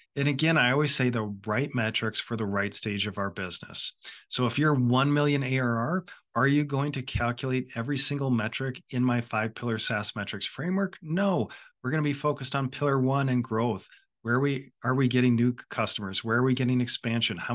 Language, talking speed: English, 200 wpm